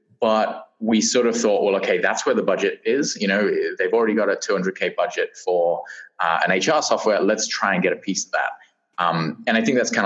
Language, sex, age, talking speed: English, male, 20-39, 235 wpm